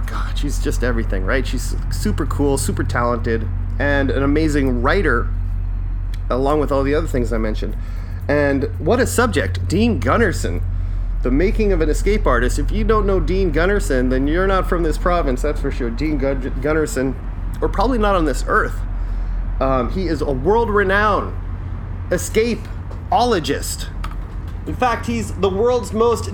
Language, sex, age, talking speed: English, male, 30-49, 160 wpm